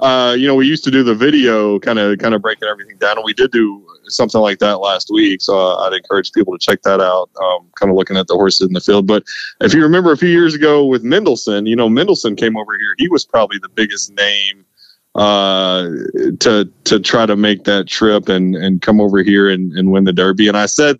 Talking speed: 250 wpm